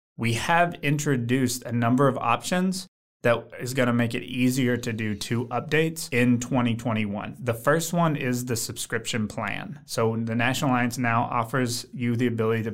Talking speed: 175 wpm